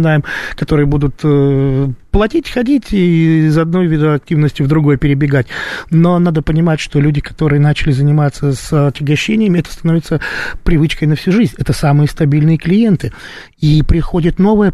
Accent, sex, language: native, male, Russian